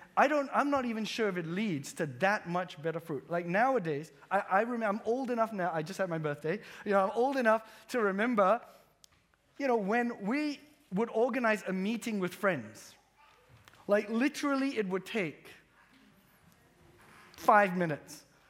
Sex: male